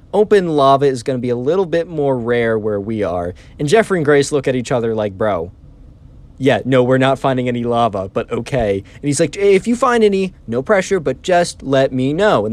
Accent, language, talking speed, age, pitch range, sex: American, English, 230 wpm, 20-39, 115-155 Hz, male